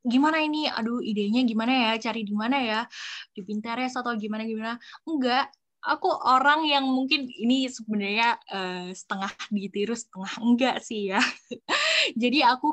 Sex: female